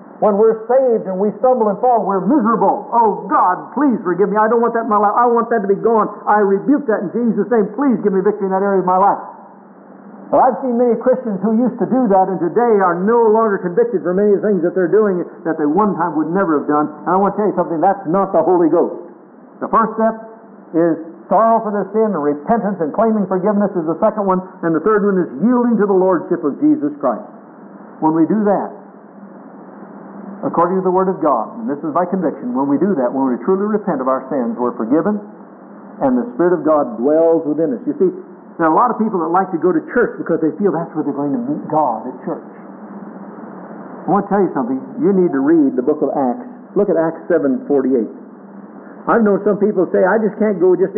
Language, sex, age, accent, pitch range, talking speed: English, male, 60-79, American, 170-220 Hz, 240 wpm